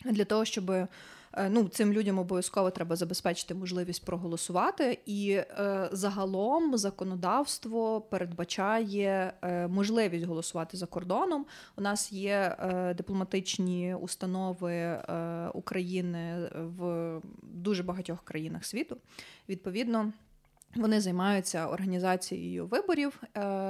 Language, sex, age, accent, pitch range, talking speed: Ukrainian, female, 20-39, native, 185-215 Hz, 85 wpm